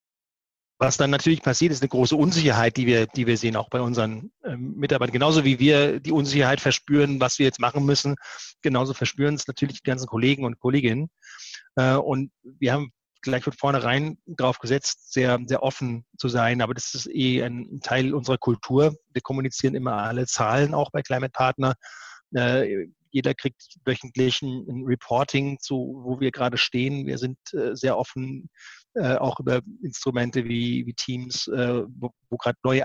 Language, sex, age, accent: German, male, 30-49, German